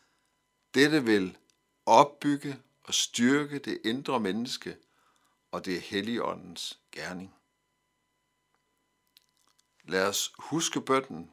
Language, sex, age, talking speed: Danish, male, 60-79, 90 wpm